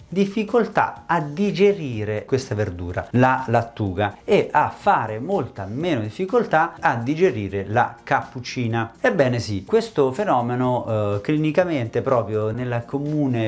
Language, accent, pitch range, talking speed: Italian, native, 110-155 Hz, 115 wpm